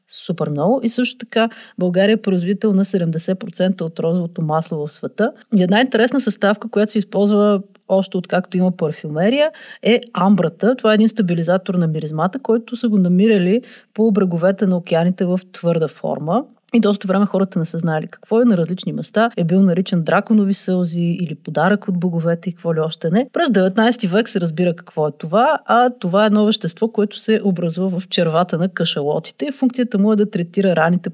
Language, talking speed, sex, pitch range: Bulgarian, 185 wpm, female, 175-220 Hz